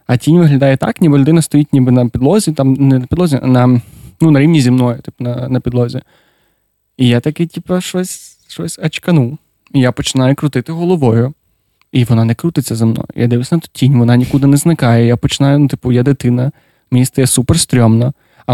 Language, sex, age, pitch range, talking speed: Ukrainian, male, 20-39, 125-160 Hz, 200 wpm